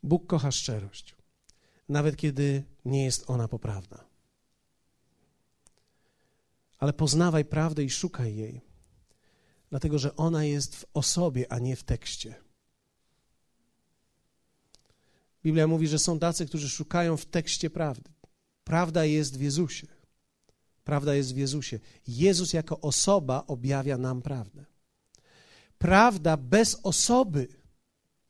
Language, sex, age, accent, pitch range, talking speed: Polish, male, 40-59, native, 110-155 Hz, 110 wpm